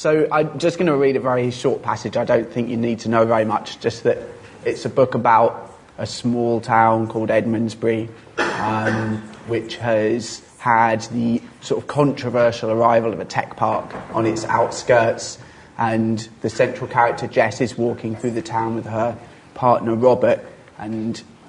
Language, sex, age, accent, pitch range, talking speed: English, male, 20-39, British, 115-130 Hz, 170 wpm